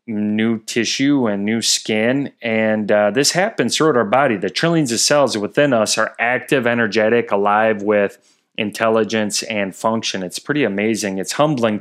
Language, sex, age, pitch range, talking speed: English, male, 30-49, 105-115 Hz, 160 wpm